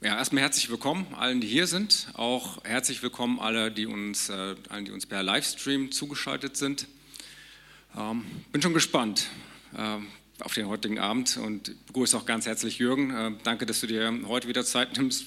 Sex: male